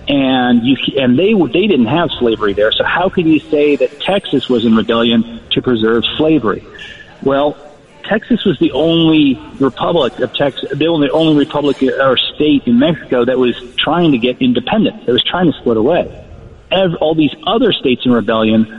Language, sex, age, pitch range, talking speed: English, male, 40-59, 125-155 Hz, 180 wpm